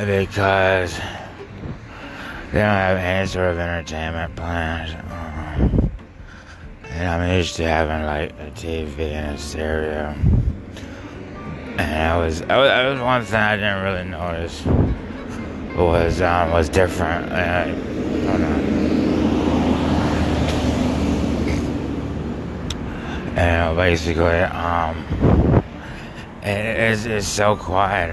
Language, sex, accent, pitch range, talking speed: English, male, American, 80-100 Hz, 95 wpm